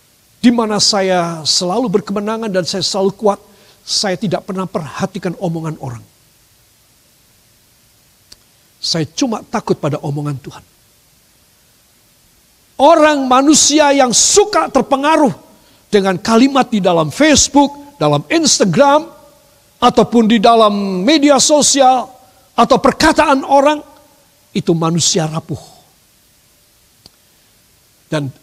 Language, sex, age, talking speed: Indonesian, male, 50-69, 95 wpm